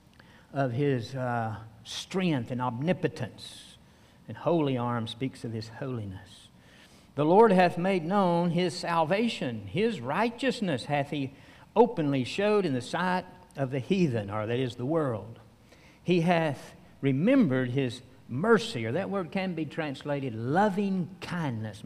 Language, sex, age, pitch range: English, male, 60-79, 125-175 Hz